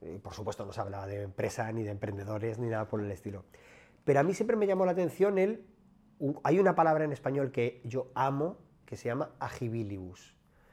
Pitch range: 110-150 Hz